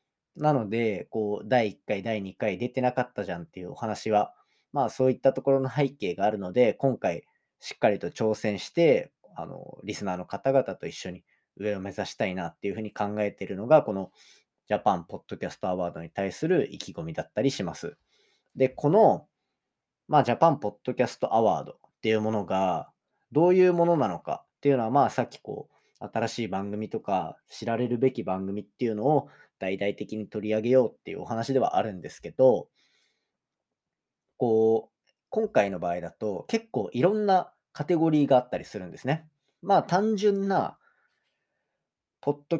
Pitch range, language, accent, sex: 105-145 Hz, Japanese, native, male